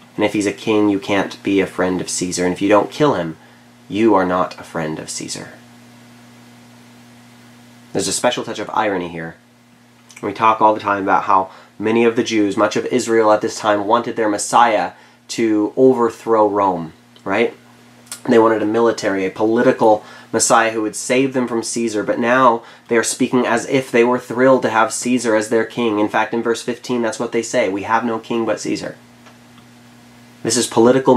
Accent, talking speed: American, 195 wpm